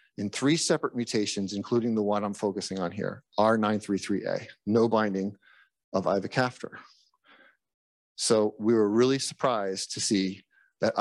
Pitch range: 105-130 Hz